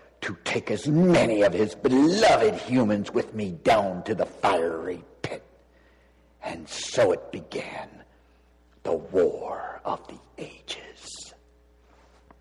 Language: English